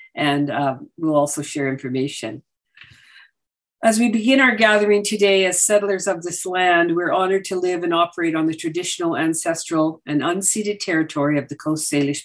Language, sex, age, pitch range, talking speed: English, female, 50-69, 145-195 Hz, 165 wpm